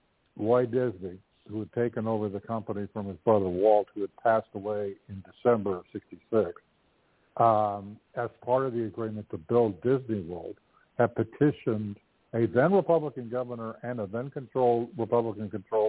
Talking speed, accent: 145 wpm, American